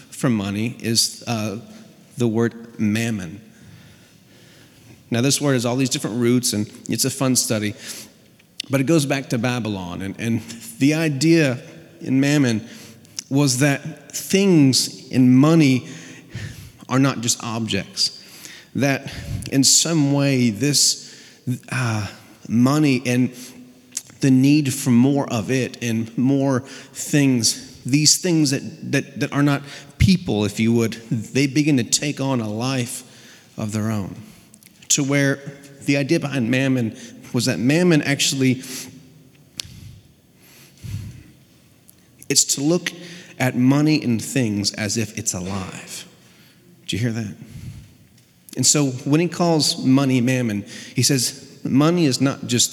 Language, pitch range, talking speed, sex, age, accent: English, 115-140 Hz, 135 wpm, male, 30-49, American